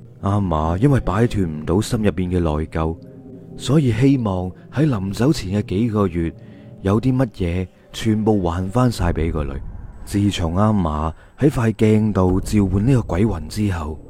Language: Chinese